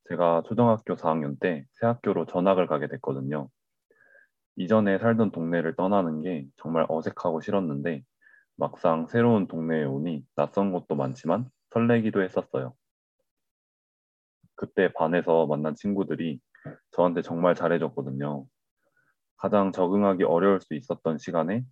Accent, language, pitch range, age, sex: native, Korean, 80-105 Hz, 20-39, male